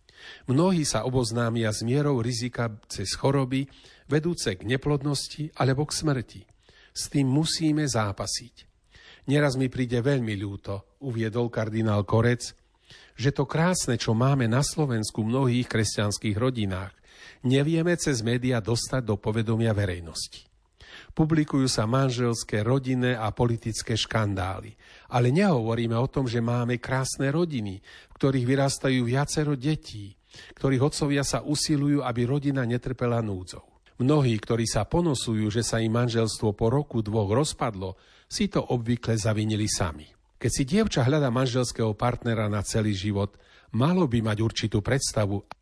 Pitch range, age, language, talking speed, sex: 110-140 Hz, 40-59, Slovak, 135 wpm, male